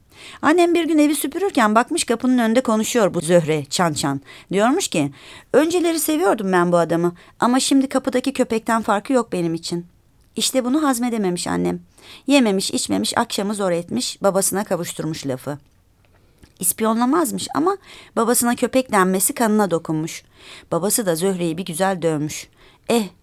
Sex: female